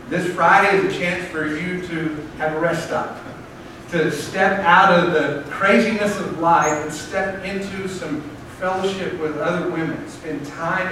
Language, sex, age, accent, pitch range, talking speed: English, male, 50-69, American, 150-180 Hz, 165 wpm